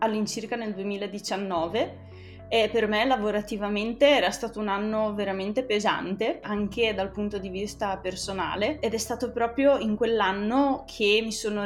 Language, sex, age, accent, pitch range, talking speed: Italian, female, 20-39, native, 195-235 Hz, 145 wpm